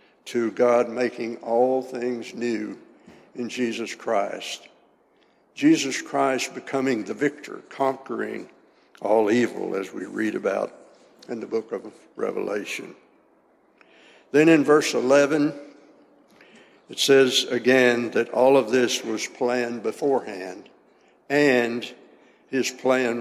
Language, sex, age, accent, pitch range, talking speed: English, male, 60-79, American, 120-145 Hz, 110 wpm